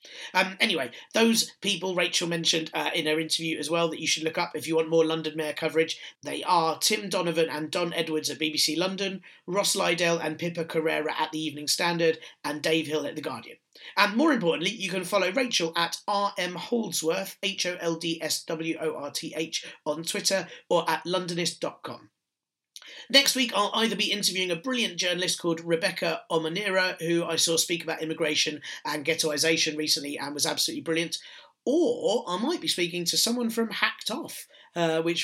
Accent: British